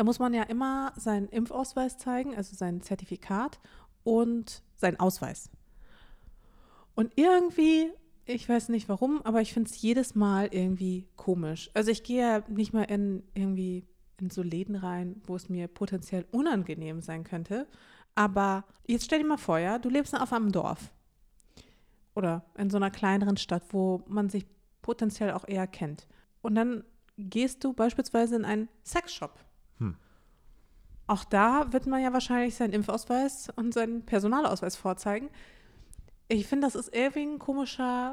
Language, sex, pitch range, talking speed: German, female, 190-240 Hz, 155 wpm